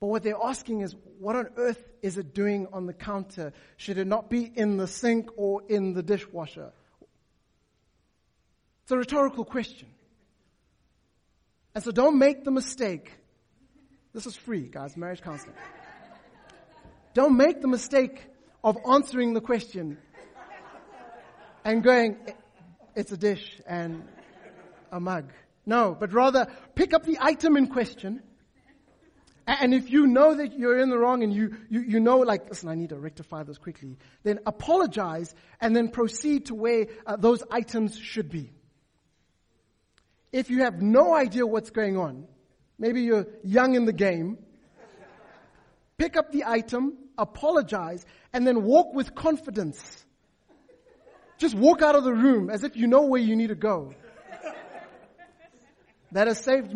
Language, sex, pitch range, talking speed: English, male, 195-260 Hz, 150 wpm